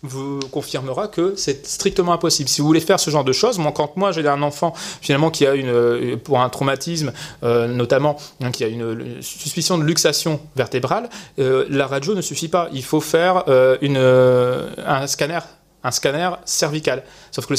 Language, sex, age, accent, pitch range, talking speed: French, male, 30-49, French, 135-185 Hz, 195 wpm